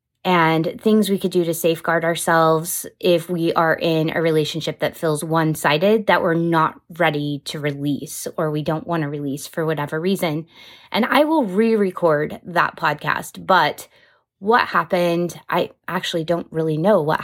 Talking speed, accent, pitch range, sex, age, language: 170 wpm, American, 160-195 Hz, female, 20-39, English